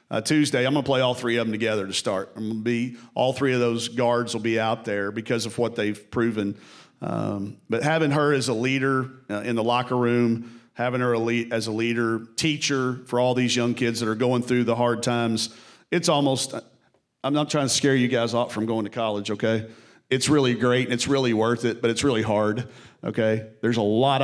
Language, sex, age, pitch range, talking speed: English, male, 40-59, 115-130 Hz, 230 wpm